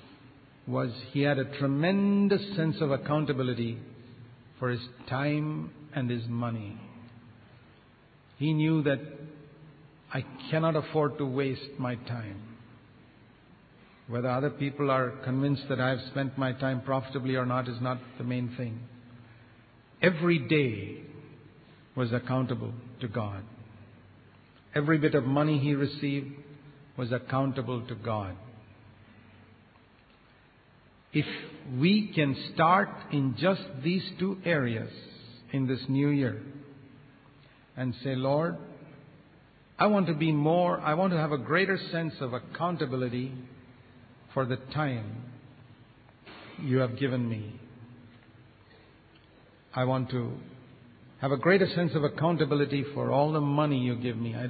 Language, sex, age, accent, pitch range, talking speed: English, male, 50-69, Indian, 120-150 Hz, 125 wpm